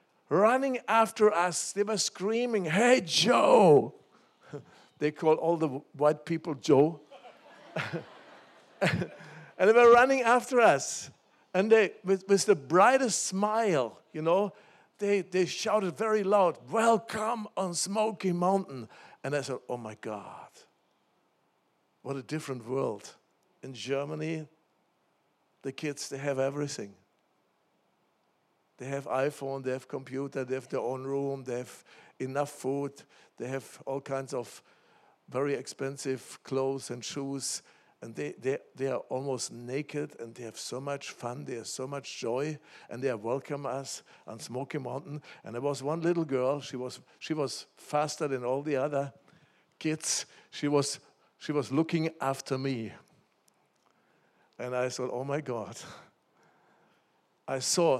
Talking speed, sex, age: 140 wpm, male, 60-79